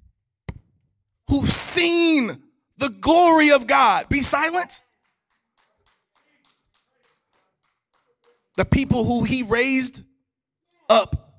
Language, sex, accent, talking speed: English, male, American, 75 wpm